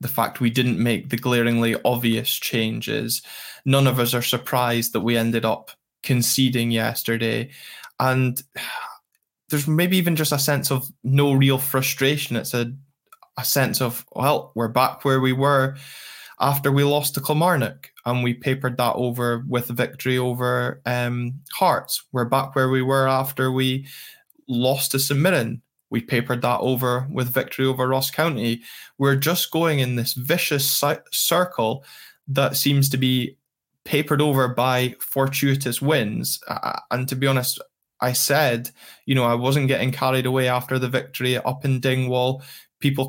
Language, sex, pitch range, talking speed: English, male, 125-135 Hz, 155 wpm